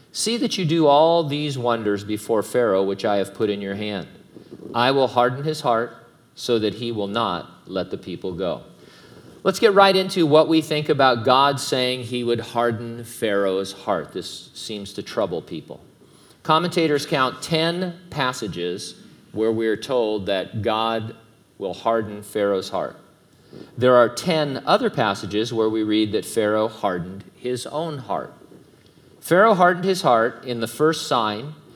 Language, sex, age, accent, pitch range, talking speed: English, male, 40-59, American, 110-155 Hz, 160 wpm